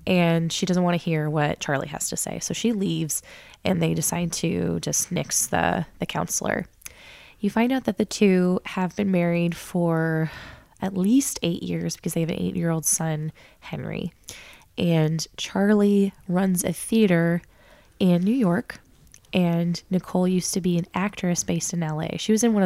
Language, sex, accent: English, female, American